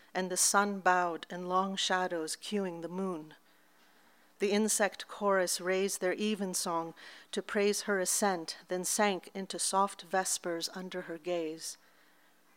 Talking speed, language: 135 wpm, English